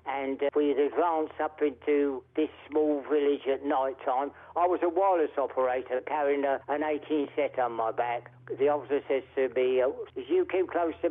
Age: 50-69